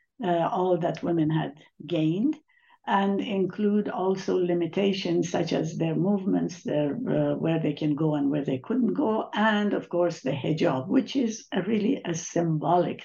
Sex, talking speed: female, 155 wpm